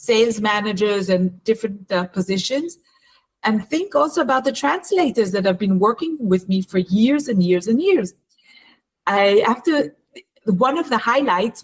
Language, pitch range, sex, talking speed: Hebrew, 195-265 Hz, female, 160 wpm